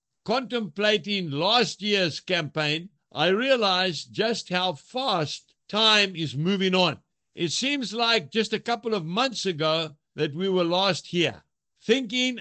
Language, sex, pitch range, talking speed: English, male, 170-225 Hz, 135 wpm